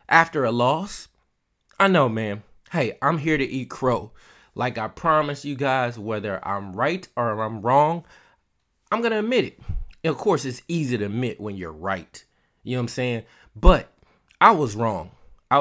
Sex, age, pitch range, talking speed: male, 20-39, 110-160 Hz, 185 wpm